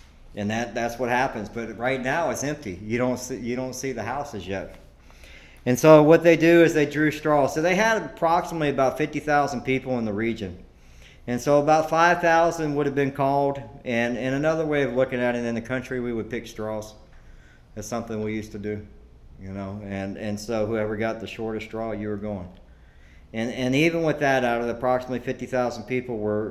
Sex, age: male, 50-69